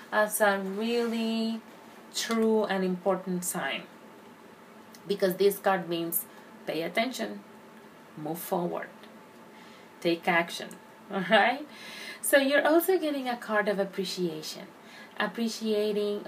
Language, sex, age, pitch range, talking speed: English, female, 30-49, 190-225 Hz, 100 wpm